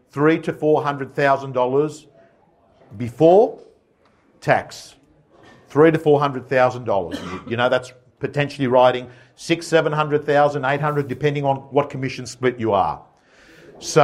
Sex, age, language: male, 50-69, English